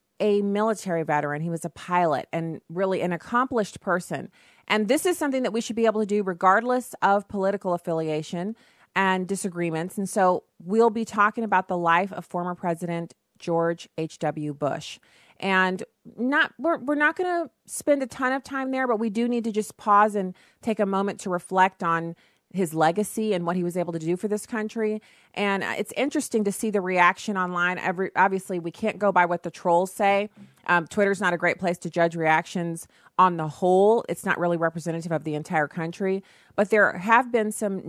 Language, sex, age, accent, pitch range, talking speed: English, female, 30-49, American, 170-215 Hz, 200 wpm